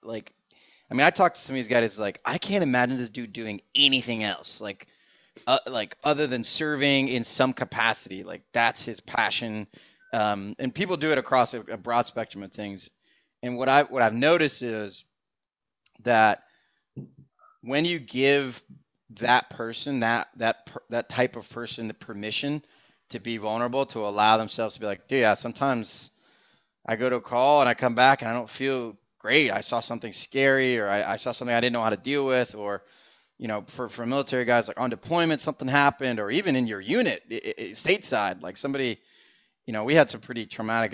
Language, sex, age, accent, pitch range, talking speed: English, male, 20-39, American, 110-135 Hz, 200 wpm